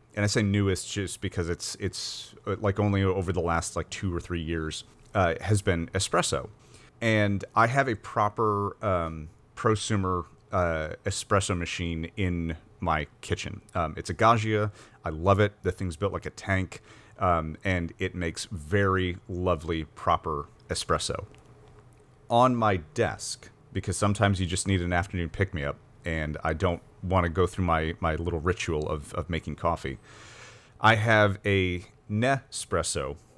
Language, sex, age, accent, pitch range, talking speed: English, male, 30-49, American, 85-105 Hz, 160 wpm